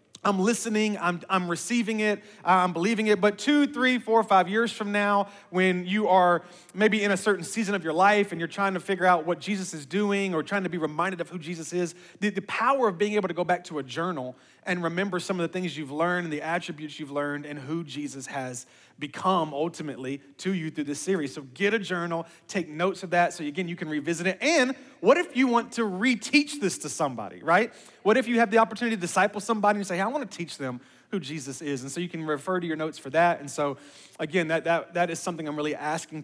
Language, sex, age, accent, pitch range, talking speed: English, male, 30-49, American, 155-195 Hz, 245 wpm